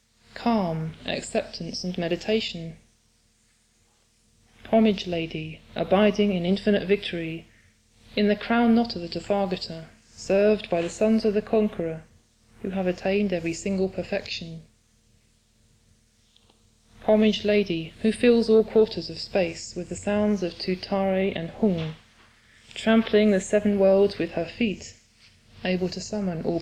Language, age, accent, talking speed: English, 20-39, British, 125 wpm